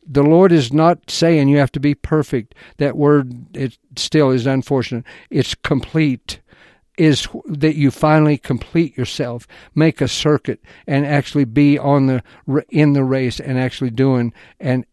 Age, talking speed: 60-79, 155 wpm